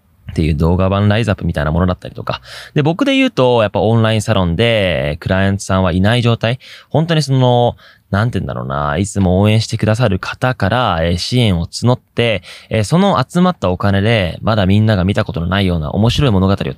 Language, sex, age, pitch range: Japanese, male, 20-39, 90-120 Hz